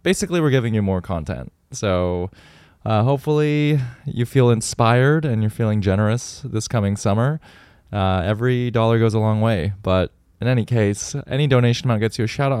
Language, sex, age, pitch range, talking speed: English, male, 20-39, 95-120 Hz, 180 wpm